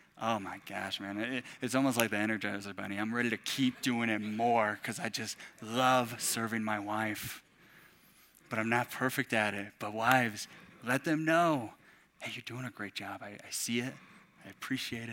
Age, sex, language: 20-39, male, English